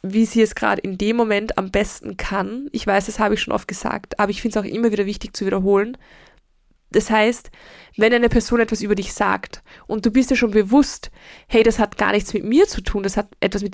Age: 20-39